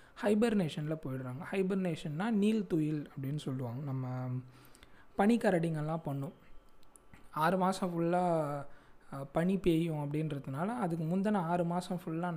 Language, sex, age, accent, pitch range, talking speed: Tamil, male, 20-39, native, 155-190 Hz, 100 wpm